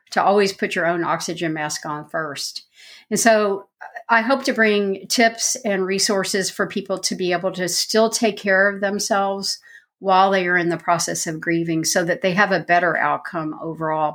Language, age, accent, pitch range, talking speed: English, 50-69, American, 170-210 Hz, 190 wpm